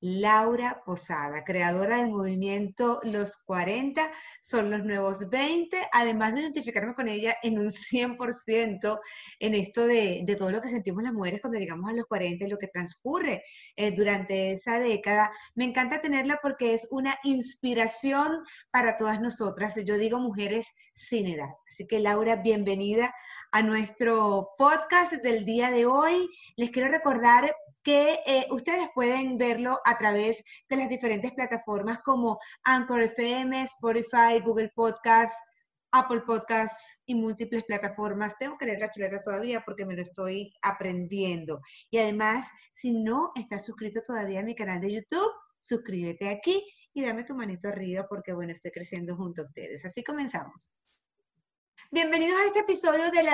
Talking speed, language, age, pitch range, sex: 155 wpm, Spanish, 30-49, 205-260 Hz, female